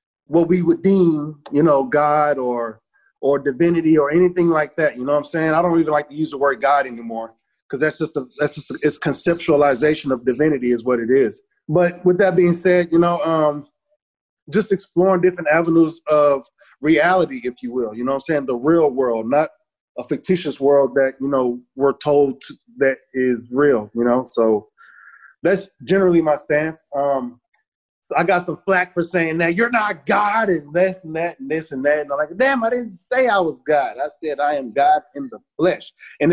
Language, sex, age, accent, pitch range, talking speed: English, male, 20-39, American, 140-180 Hz, 210 wpm